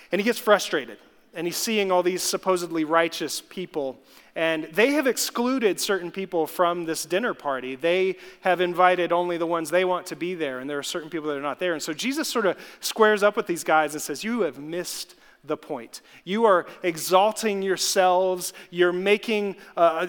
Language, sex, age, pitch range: English, male, 30-49, 170-215 Hz